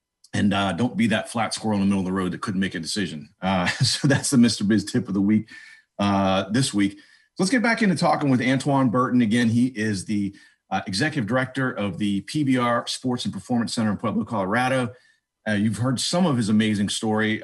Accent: American